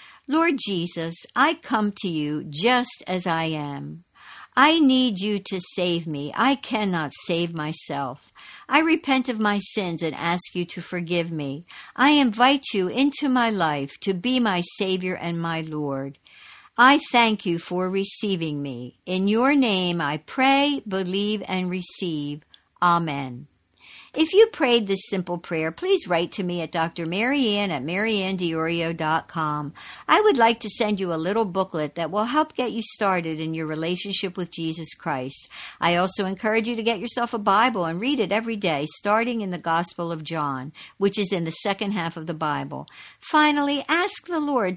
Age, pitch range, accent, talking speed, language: 60-79, 165-235 Hz, American, 175 wpm, English